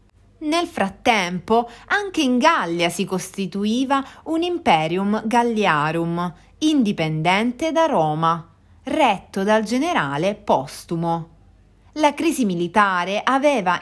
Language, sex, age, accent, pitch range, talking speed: Italian, female, 30-49, native, 175-275 Hz, 90 wpm